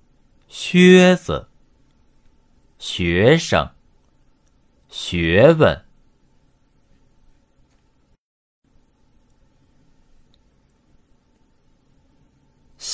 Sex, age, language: male, 50-69, Chinese